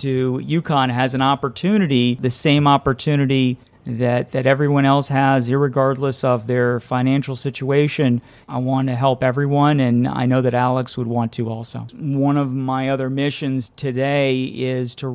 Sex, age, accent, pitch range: male, 40-59, American, 130-145 Hz